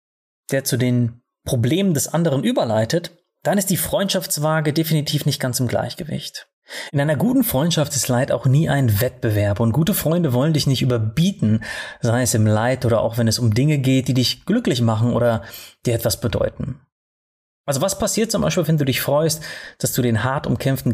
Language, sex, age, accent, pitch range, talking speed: German, male, 30-49, German, 120-160 Hz, 190 wpm